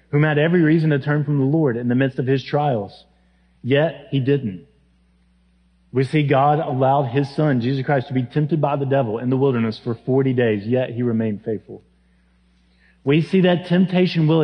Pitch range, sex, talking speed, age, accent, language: 125-160 Hz, male, 195 wpm, 30-49, American, English